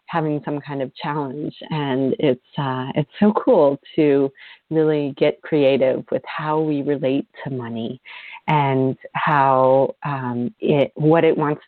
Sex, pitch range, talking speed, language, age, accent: female, 130-155 Hz, 145 wpm, English, 40-59, American